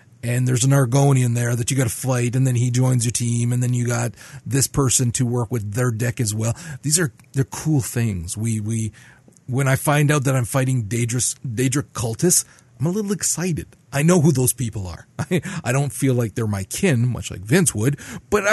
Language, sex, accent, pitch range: English, male, American, 110-135 Hz